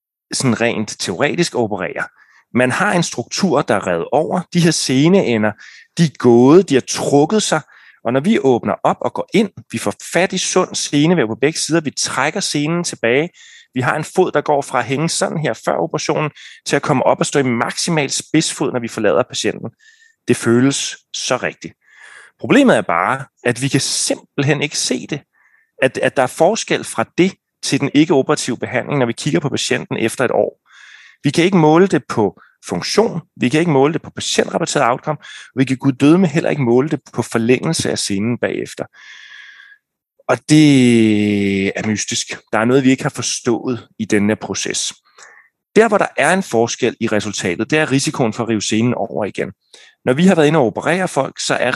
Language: Danish